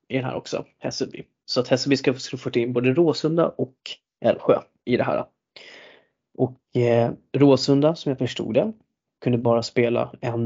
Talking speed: 160 wpm